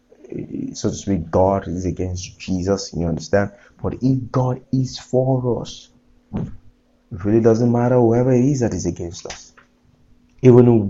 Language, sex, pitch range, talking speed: English, male, 90-115 Hz, 150 wpm